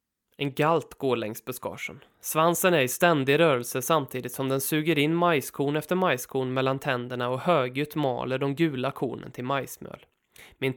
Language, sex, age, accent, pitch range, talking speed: Swedish, male, 20-39, native, 135-170 Hz, 160 wpm